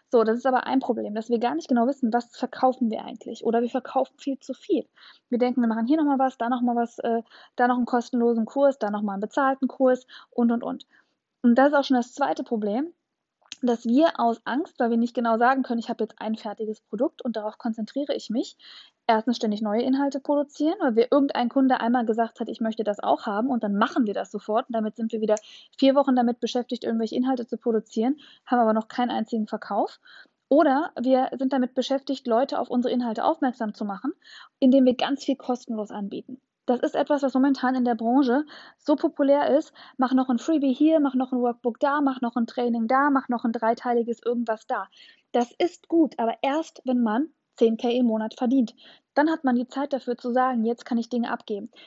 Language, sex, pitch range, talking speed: German, female, 235-275 Hz, 220 wpm